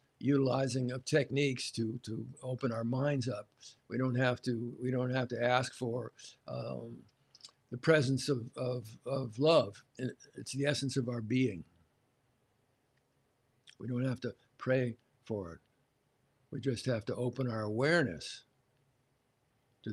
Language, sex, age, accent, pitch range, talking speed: English, male, 60-79, American, 115-135 Hz, 140 wpm